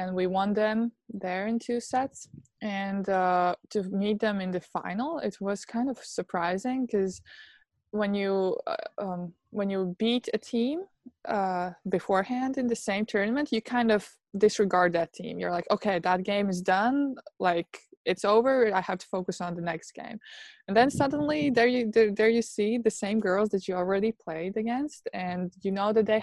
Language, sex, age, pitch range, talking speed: English, female, 20-39, 185-230 Hz, 190 wpm